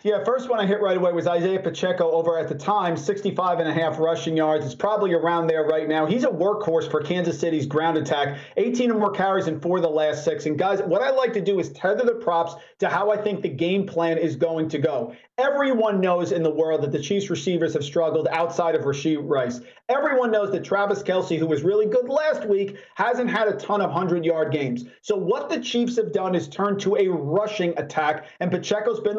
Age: 40-59